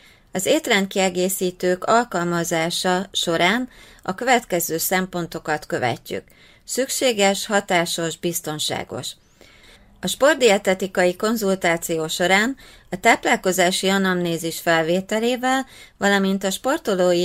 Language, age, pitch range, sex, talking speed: Hungarian, 30-49, 165-200 Hz, female, 75 wpm